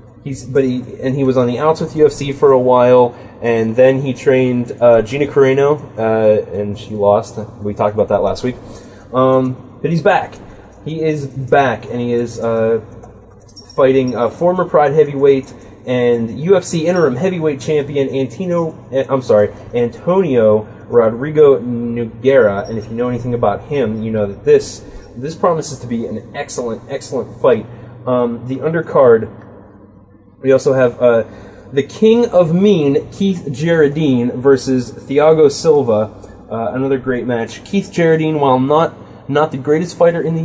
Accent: American